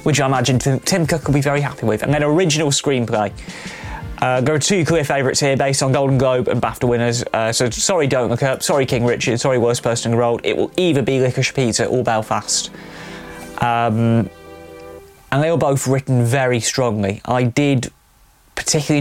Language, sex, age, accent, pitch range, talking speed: English, male, 20-39, British, 115-135 Hz, 195 wpm